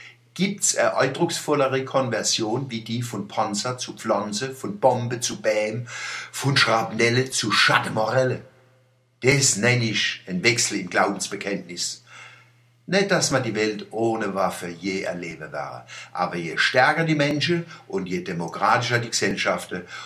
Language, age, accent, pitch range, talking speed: German, 60-79, German, 110-140 Hz, 135 wpm